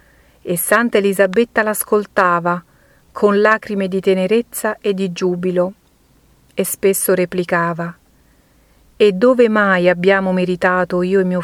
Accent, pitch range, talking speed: native, 180-205 Hz, 115 wpm